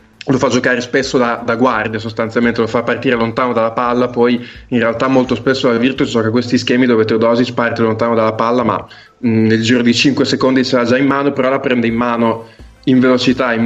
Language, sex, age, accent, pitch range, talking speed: Italian, male, 20-39, native, 115-130 Hz, 220 wpm